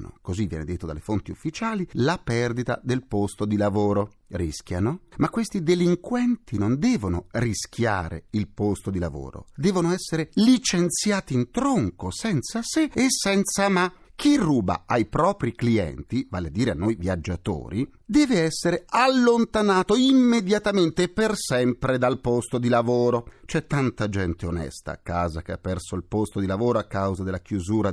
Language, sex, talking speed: Italian, male, 155 wpm